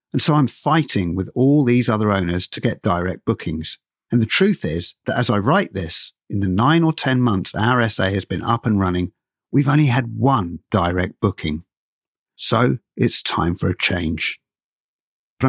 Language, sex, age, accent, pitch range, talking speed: English, male, 50-69, British, 90-120 Hz, 185 wpm